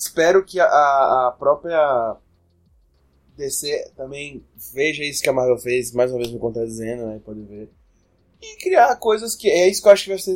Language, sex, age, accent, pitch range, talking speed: Portuguese, male, 20-39, Brazilian, 125-160 Hz, 185 wpm